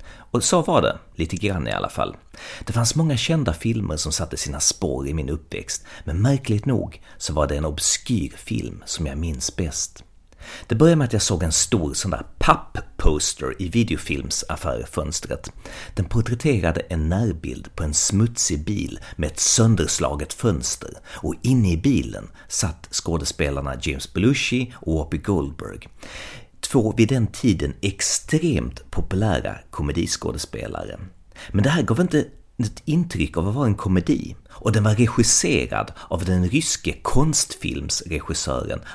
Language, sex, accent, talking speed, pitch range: Swedish, male, native, 150 wpm, 80-115 Hz